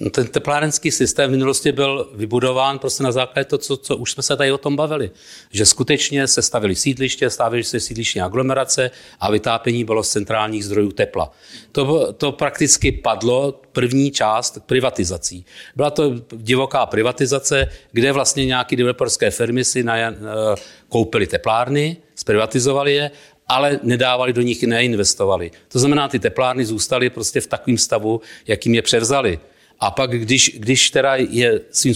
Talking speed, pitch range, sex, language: 155 wpm, 115-140 Hz, male, Czech